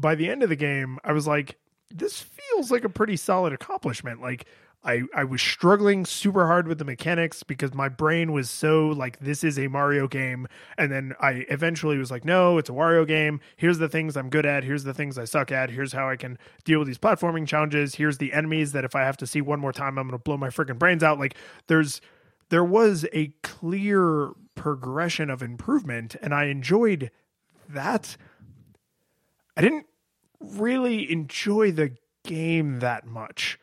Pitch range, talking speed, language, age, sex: 140-185 Hz, 195 wpm, English, 20-39, male